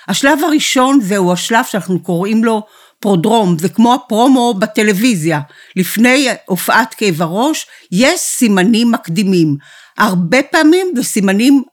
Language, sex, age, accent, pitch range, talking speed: Hebrew, female, 50-69, native, 190-250 Hz, 120 wpm